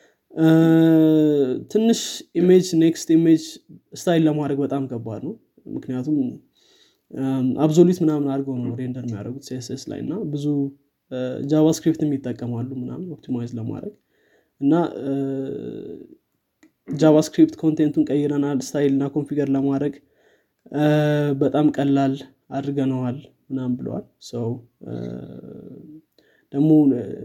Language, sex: Amharic, male